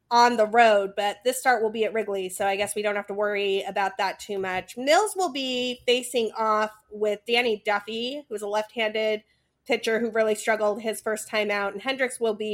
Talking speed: 215 wpm